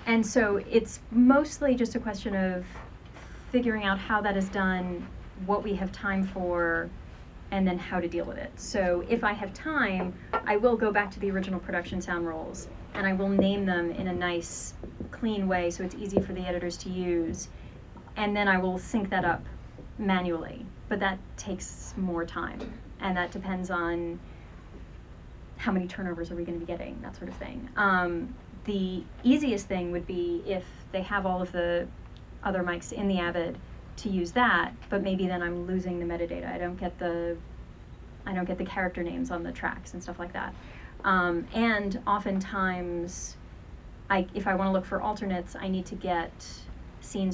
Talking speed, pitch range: 185 wpm, 175-200 Hz